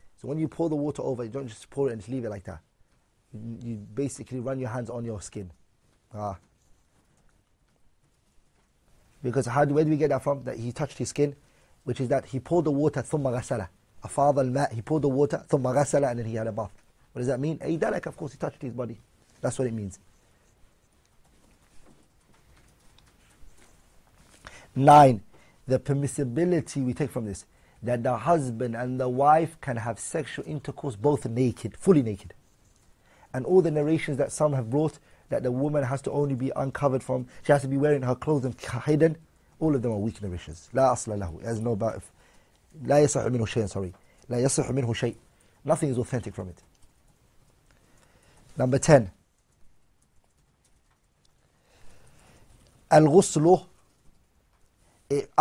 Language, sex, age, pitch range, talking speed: English, male, 30-49, 110-145 Hz, 155 wpm